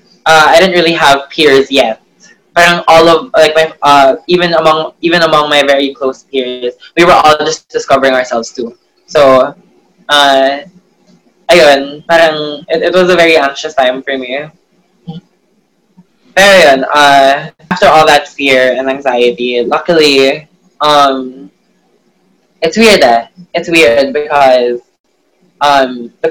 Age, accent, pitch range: 20-39, Filipino, 135-165 Hz